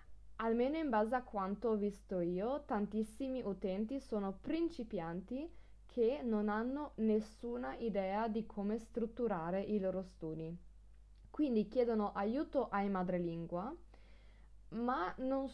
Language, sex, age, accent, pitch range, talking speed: Italian, female, 20-39, native, 185-240 Hz, 115 wpm